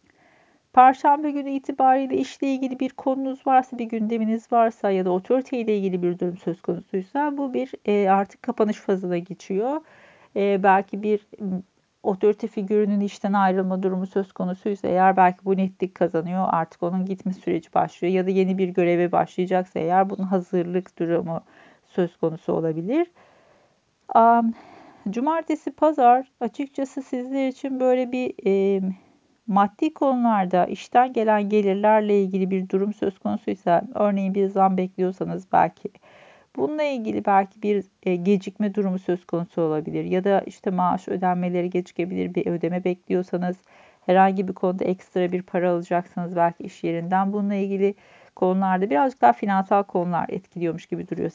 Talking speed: 135 wpm